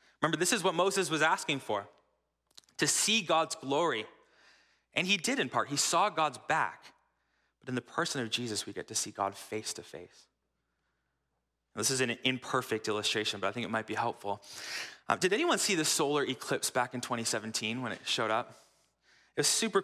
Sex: male